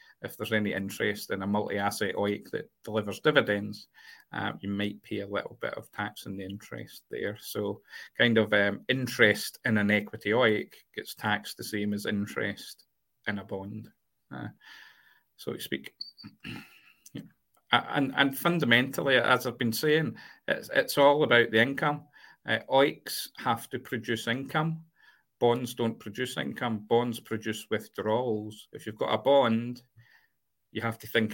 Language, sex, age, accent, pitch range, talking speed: English, male, 40-59, British, 105-125 Hz, 155 wpm